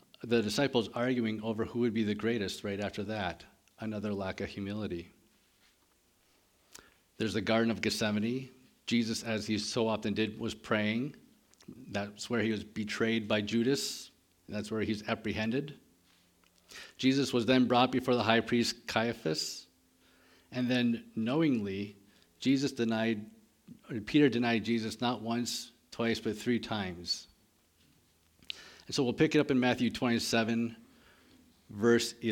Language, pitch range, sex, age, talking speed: English, 90-120 Hz, male, 50-69, 135 wpm